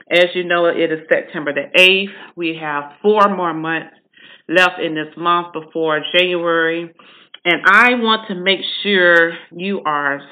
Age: 40-59